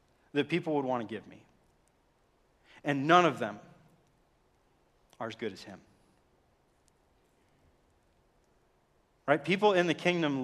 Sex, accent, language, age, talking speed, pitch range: male, American, English, 40-59, 120 wpm, 145-180 Hz